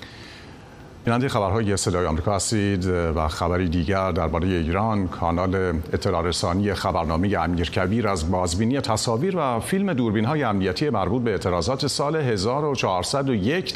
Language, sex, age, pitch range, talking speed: Persian, male, 50-69, 90-125 Hz, 120 wpm